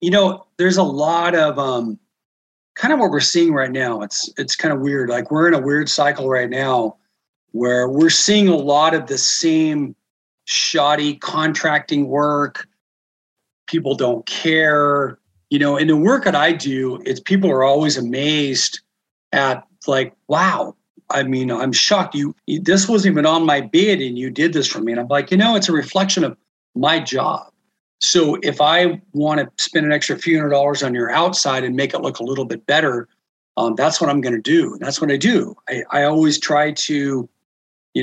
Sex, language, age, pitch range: male, English, 40-59, 135-170 Hz